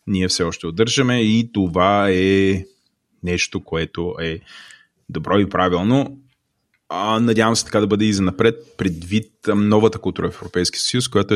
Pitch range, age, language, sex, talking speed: 90-110 Hz, 30-49, Bulgarian, male, 155 wpm